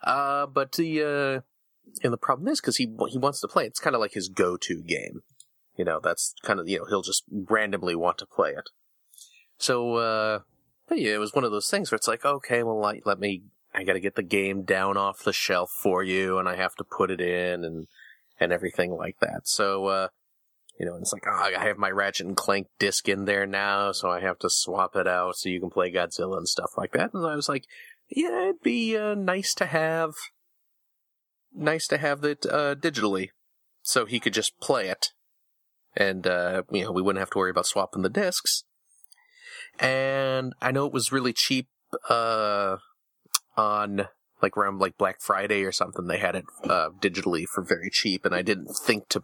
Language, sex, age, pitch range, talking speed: English, male, 30-49, 100-150 Hz, 215 wpm